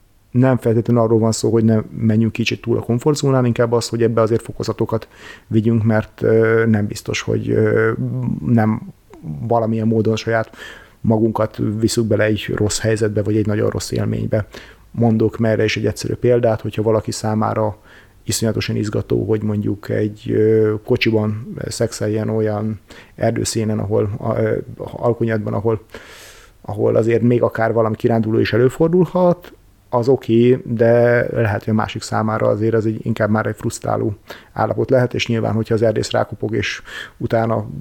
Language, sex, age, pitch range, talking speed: Hungarian, male, 30-49, 110-120 Hz, 145 wpm